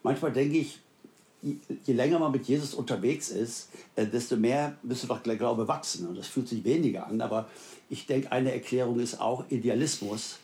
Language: German